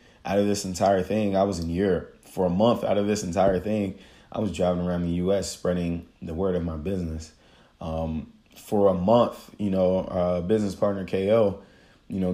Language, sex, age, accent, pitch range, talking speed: English, male, 30-49, American, 85-95 Hz, 205 wpm